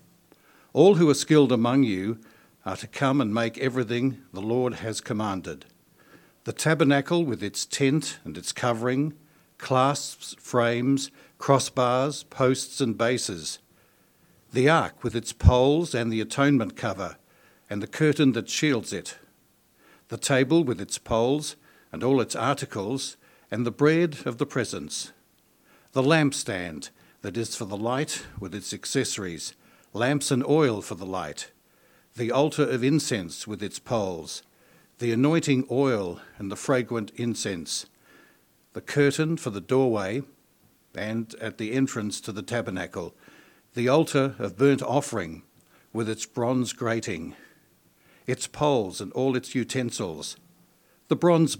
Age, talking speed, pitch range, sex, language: 60-79, 140 wpm, 110-140 Hz, male, English